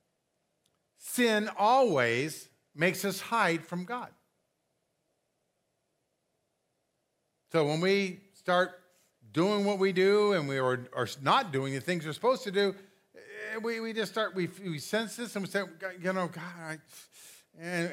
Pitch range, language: 150-225 Hz, English